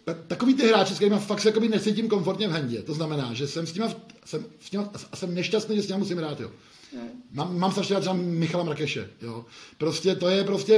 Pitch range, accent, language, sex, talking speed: 155-195 Hz, native, Czech, male, 210 wpm